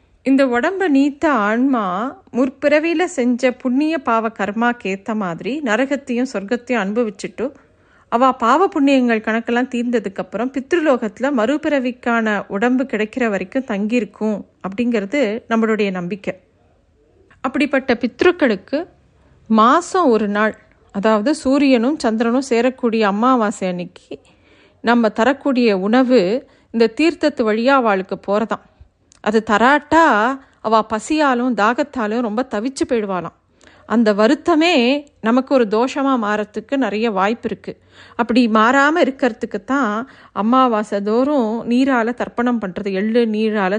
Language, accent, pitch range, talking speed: Tamil, native, 210-265 Hz, 100 wpm